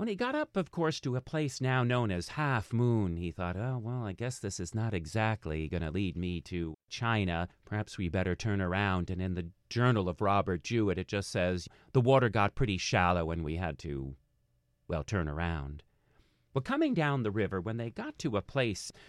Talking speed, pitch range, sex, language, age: 215 wpm, 90-135 Hz, male, English, 40-59